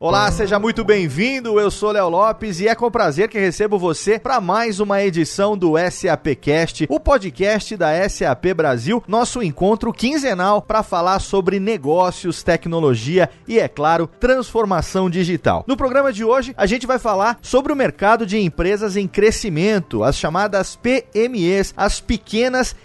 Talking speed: 160 wpm